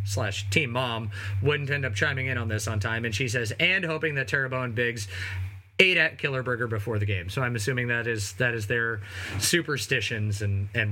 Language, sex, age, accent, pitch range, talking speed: English, male, 30-49, American, 105-155 Hz, 210 wpm